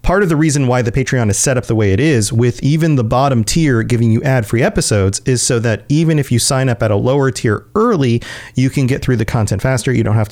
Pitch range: 110-145 Hz